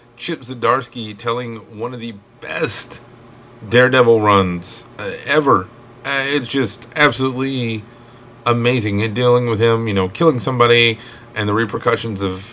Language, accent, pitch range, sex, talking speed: English, American, 115-125 Hz, male, 135 wpm